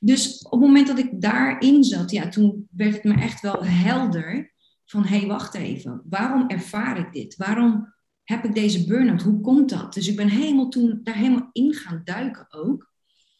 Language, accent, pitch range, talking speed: Dutch, Dutch, 200-245 Hz, 195 wpm